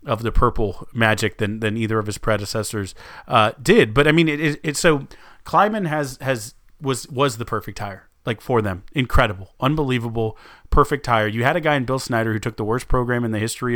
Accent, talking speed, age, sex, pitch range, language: American, 215 wpm, 30-49, male, 110-135 Hz, English